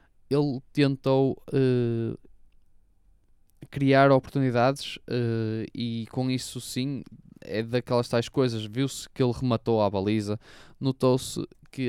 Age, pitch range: 20-39, 120-140 Hz